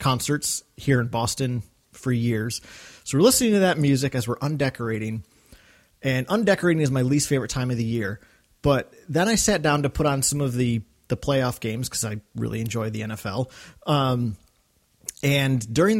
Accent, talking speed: American, 180 wpm